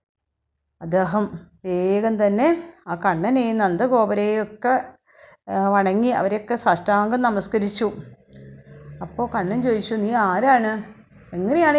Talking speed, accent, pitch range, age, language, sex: 80 wpm, native, 205-270 Hz, 30-49, Malayalam, female